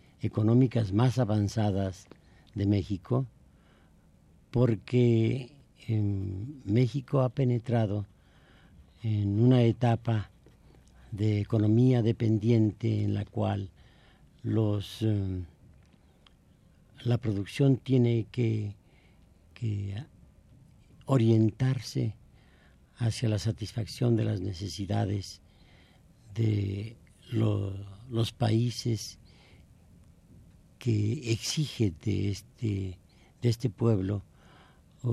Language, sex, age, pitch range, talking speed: Spanish, male, 50-69, 100-120 Hz, 75 wpm